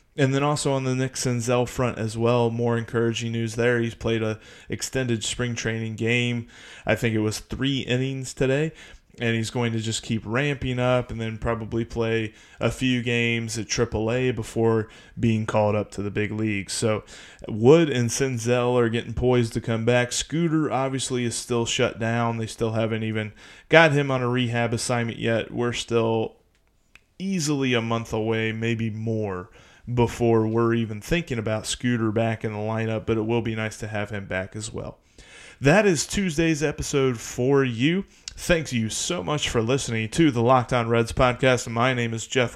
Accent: American